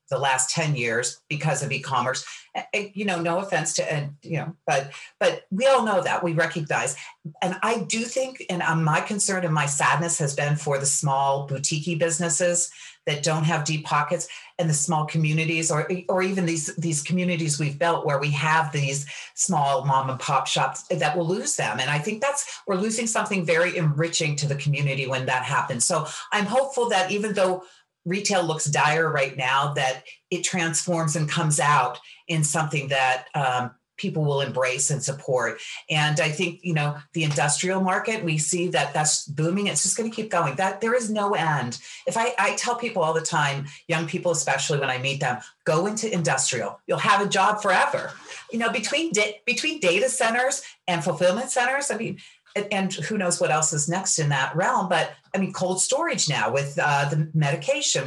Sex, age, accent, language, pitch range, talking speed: female, 40-59, American, English, 150-190 Hz, 195 wpm